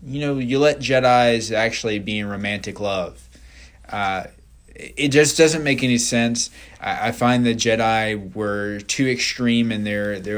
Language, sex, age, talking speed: English, male, 20-39, 155 wpm